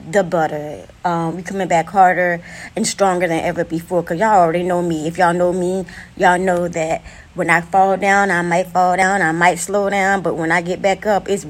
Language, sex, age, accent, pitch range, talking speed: English, female, 20-39, American, 170-195 Hz, 225 wpm